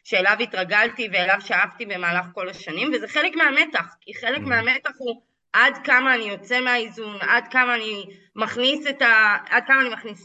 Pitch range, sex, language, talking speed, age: 210-260 Hz, female, Hebrew, 135 wpm, 20-39